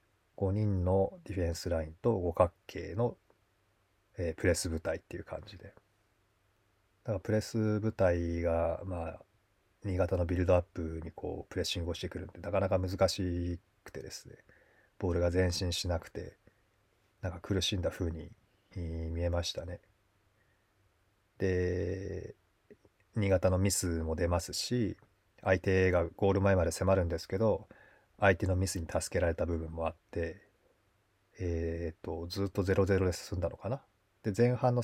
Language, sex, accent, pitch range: Japanese, male, native, 90-105 Hz